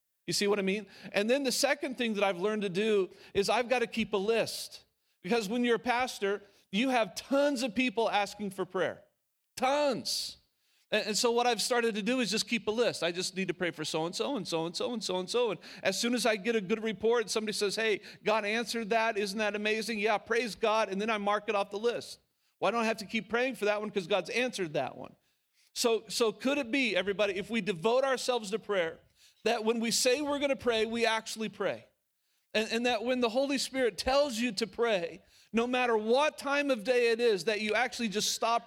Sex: male